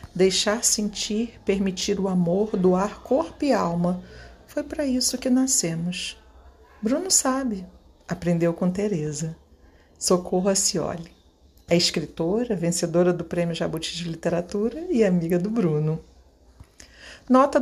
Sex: female